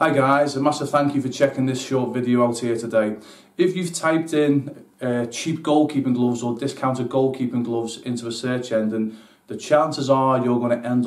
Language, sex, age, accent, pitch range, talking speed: English, male, 30-49, British, 120-135 Hz, 200 wpm